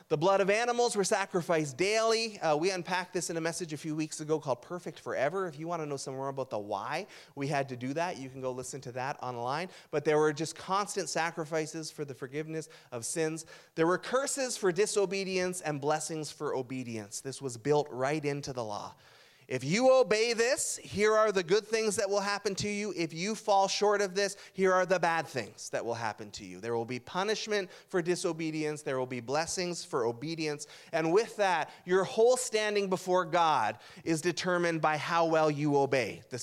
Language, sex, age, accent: English, male, 30-49, American